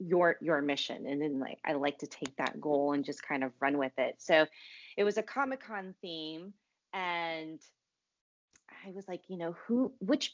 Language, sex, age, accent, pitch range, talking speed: English, female, 30-49, American, 150-195 Hz, 195 wpm